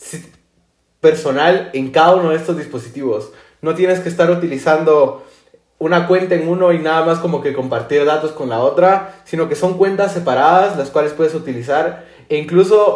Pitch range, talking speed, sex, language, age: 145-180 Hz, 170 wpm, male, Spanish, 20-39